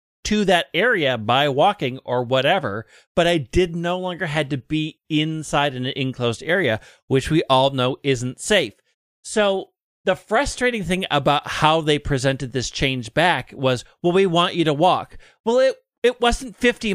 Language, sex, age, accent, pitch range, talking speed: English, male, 40-59, American, 150-205 Hz, 170 wpm